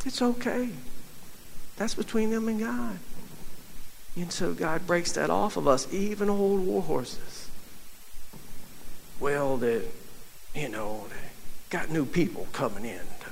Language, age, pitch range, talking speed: English, 60-79, 140-195 Hz, 135 wpm